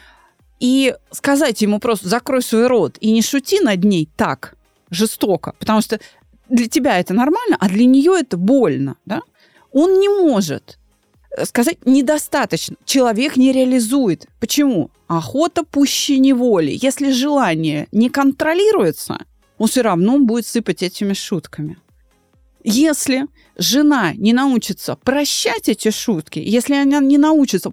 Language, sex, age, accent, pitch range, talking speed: Russian, female, 30-49, native, 205-290 Hz, 130 wpm